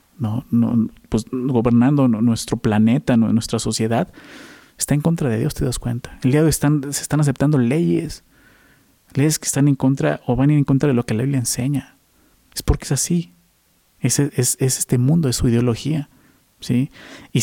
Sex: male